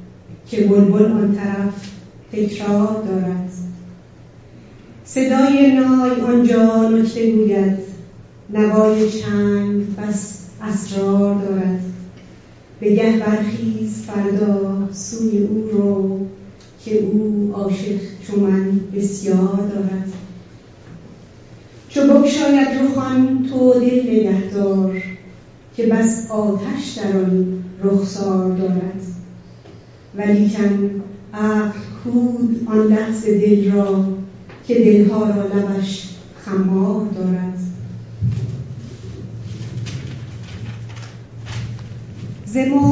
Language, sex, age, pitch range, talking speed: Persian, female, 40-59, 190-215 Hz, 80 wpm